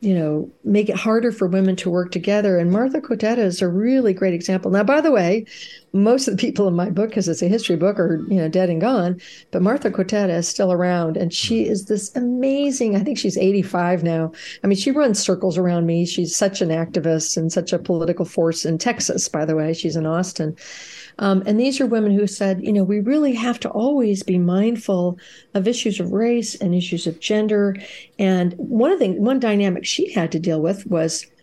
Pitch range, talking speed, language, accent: 175-220 Hz, 220 wpm, English, American